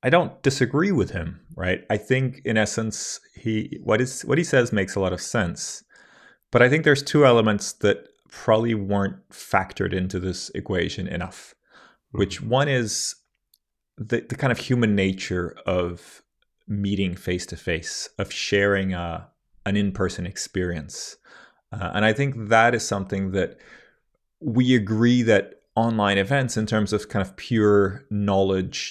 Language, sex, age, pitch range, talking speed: English, male, 30-49, 95-120 Hz, 155 wpm